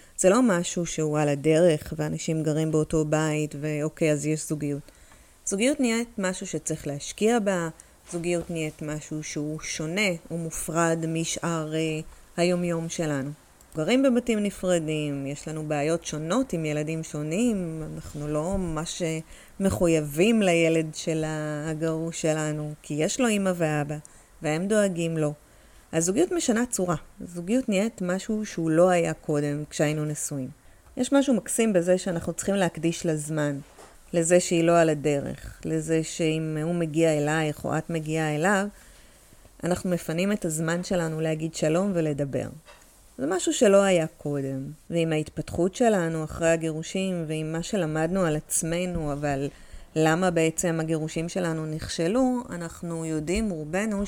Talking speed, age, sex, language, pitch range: 135 wpm, 30-49, female, Hebrew, 155-180 Hz